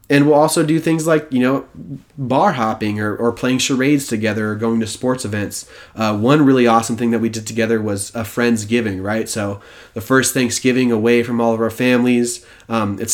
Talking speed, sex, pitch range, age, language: 205 wpm, male, 110-130 Hz, 20-39, English